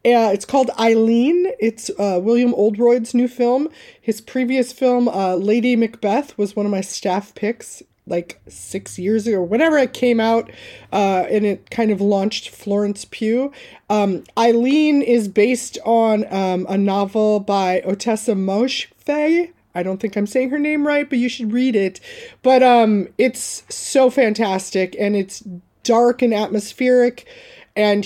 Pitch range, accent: 195-245 Hz, American